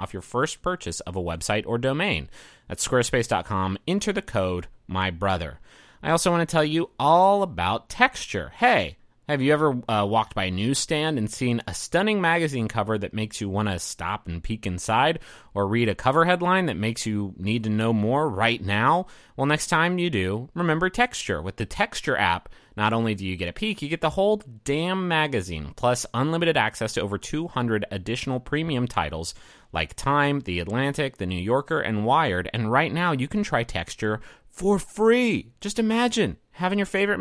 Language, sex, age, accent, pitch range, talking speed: English, male, 30-49, American, 100-160 Hz, 190 wpm